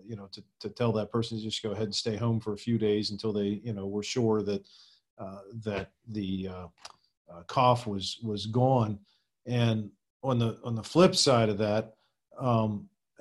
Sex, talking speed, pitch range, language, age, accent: male, 200 wpm, 110-130 Hz, English, 40-59, American